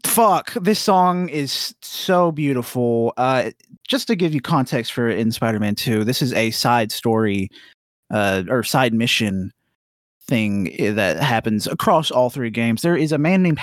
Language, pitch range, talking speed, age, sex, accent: English, 115-180 Hz, 165 wpm, 20-39, male, American